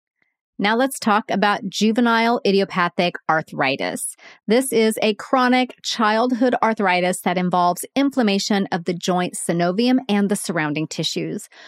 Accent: American